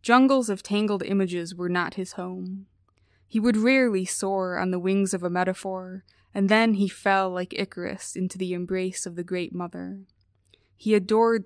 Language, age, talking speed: English, 20-39, 175 wpm